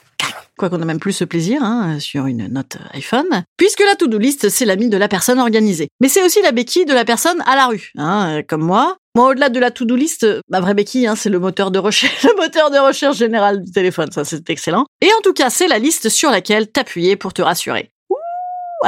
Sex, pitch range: female, 175-260 Hz